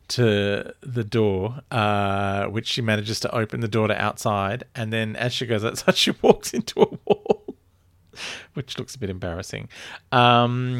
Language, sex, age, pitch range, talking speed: English, male, 40-59, 105-125 Hz, 165 wpm